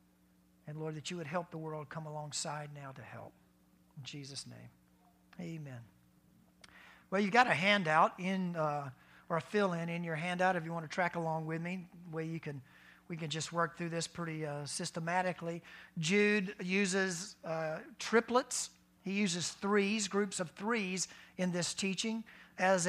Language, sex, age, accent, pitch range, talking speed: English, male, 50-69, American, 160-195 Hz, 170 wpm